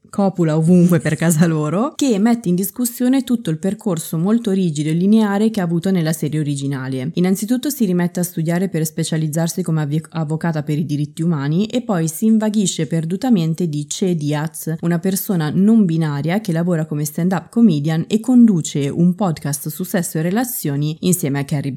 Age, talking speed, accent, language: 20-39, 175 wpm, native, Italian